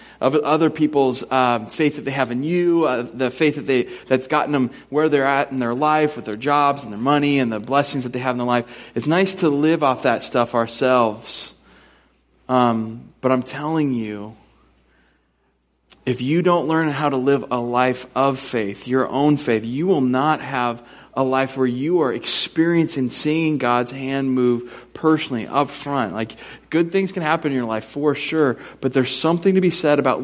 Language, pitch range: English, 125-165 Hz